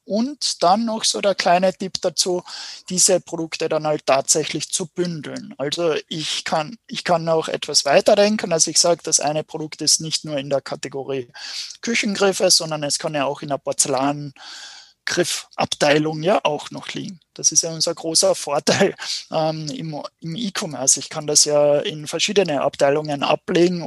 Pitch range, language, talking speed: 140-175 Hz, German, 165 wpm